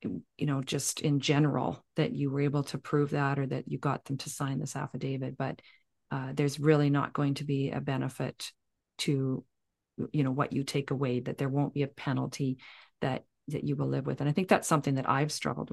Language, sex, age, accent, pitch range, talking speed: English, female, 40-59, American, 140-155 Hz, 220 wpm